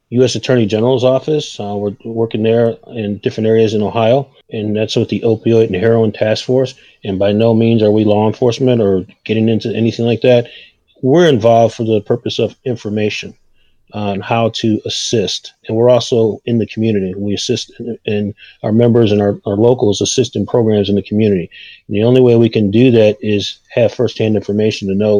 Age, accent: 30-49, American